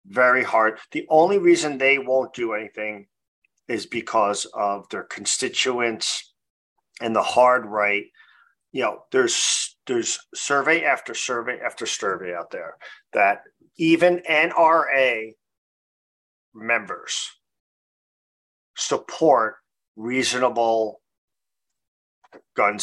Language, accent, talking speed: English, American, 95 wpm